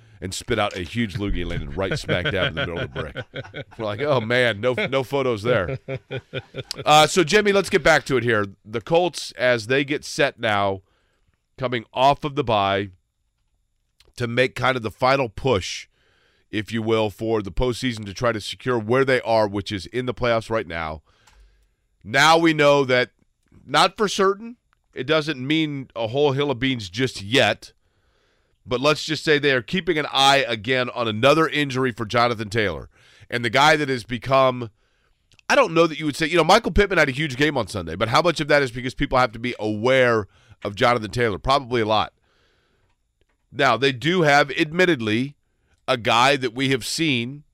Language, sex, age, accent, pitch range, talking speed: English, male, 40-59, American, 115-145 Hz, 200 wpm